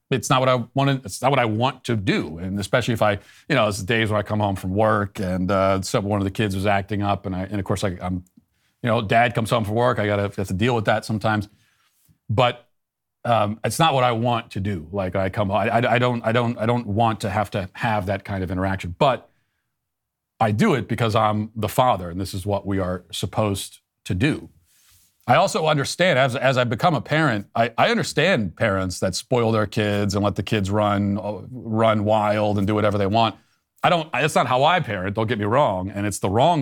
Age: 40-59